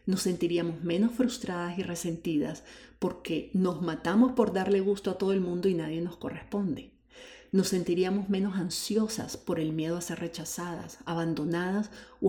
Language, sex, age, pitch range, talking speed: Spanish, female, 40-59, 175-210 Hz, 155 wpm